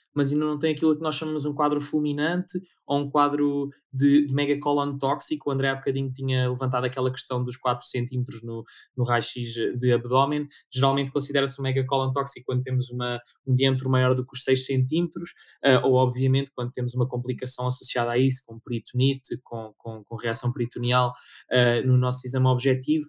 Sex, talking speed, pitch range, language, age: male, 190 wpm, 125-140 Hz, Portuguese, 20-39